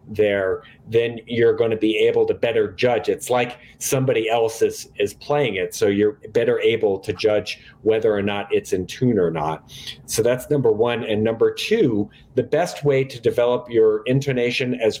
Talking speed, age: 190 wpm, 40-59